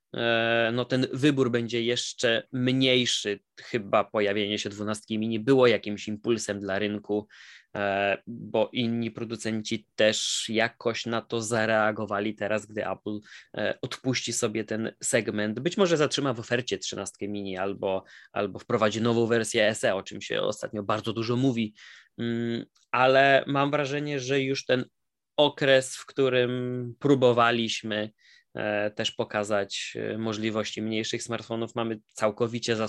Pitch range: 105-125 Hz